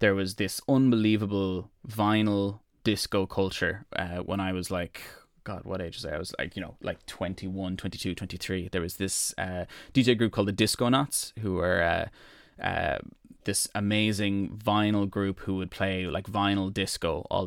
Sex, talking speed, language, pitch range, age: male, 175 wpm, English, 95-105 Hz, 20-39